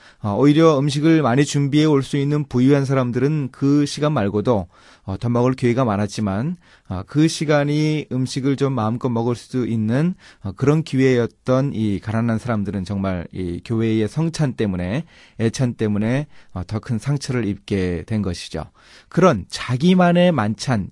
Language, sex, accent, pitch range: Korean, male, native, 105-145 Hz